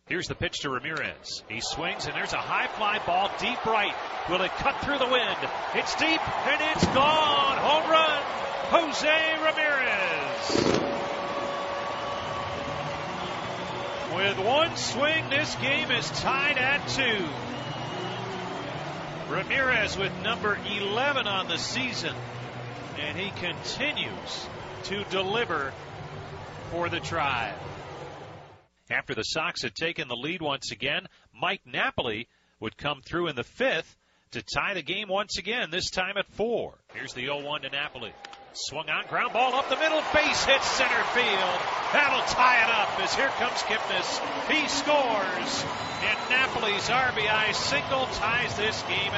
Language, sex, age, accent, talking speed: English, male, 40-59, American, 140 wpm